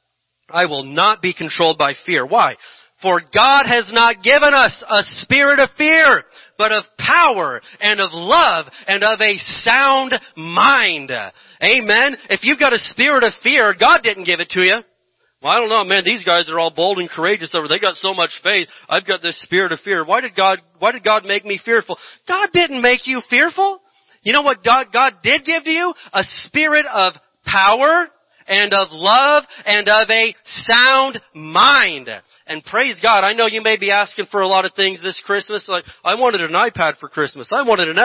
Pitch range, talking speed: 190-260 Hz, 205 wpm